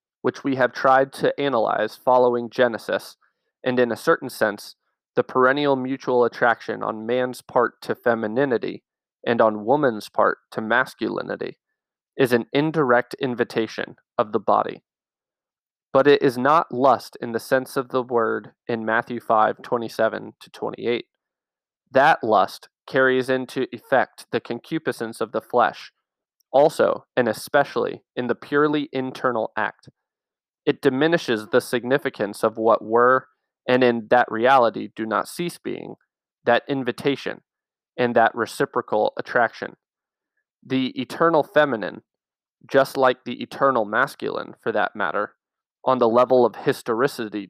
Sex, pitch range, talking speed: male, 120-140 Hz, 135 wpm